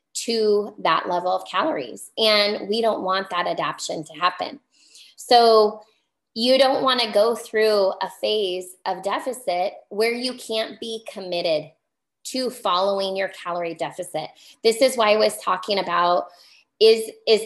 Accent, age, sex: American, 20-39, female